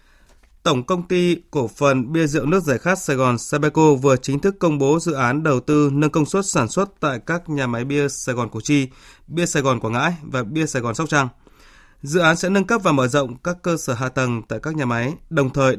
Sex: male